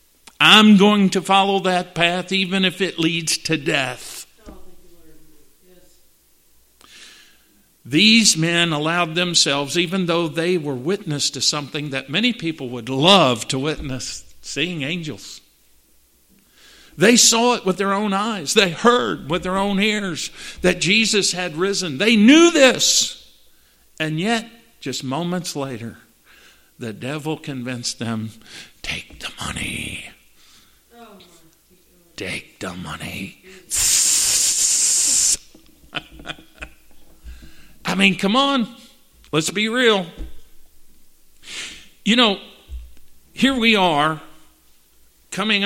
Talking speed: 105 wpm